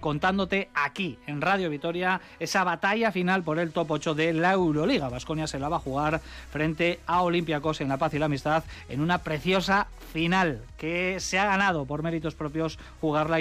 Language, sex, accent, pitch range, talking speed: Spanish, male, Spanish, 150-195 Hz, 190 wpm